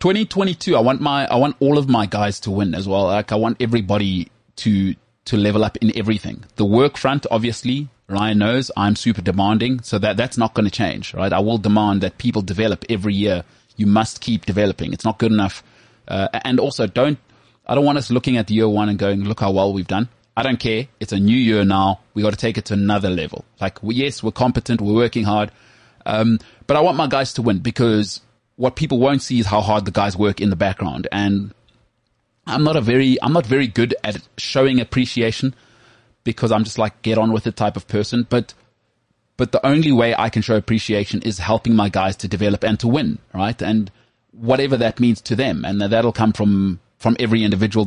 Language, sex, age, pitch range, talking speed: English, male, 30-49, 105-120 Hz, 220 wpm